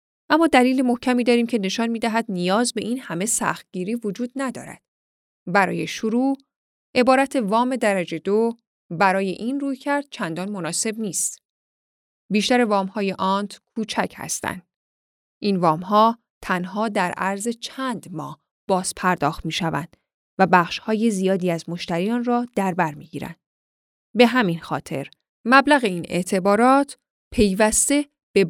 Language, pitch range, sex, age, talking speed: Persian, 180-245 Hz, female, 10-29, 120 wpm